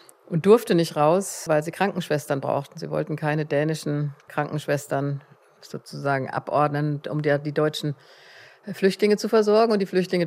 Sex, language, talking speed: female, German, 145 wpm